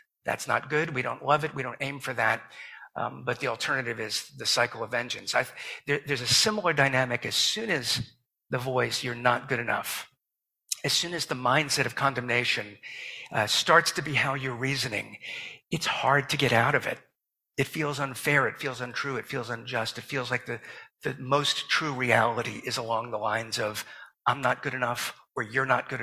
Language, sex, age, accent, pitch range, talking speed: English, male, 50-69, American, 120-140 Hz, 205 wpm